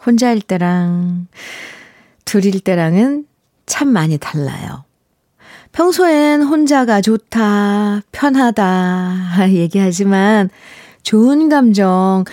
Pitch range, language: 180-250 Hz, Korean